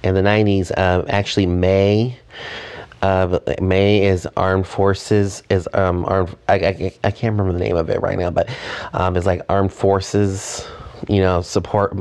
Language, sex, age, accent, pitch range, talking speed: English, male, 30-49, American, 90-105 Hz, 170 wpm